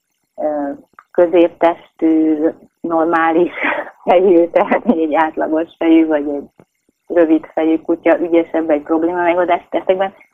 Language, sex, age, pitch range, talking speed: Hungarian, female, 30-49, 150-175 Hz, 100 wpm